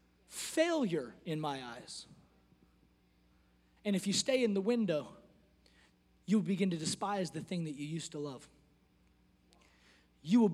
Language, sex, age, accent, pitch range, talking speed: English, male, 30-49, American, 185-290 Hz, 135 wpm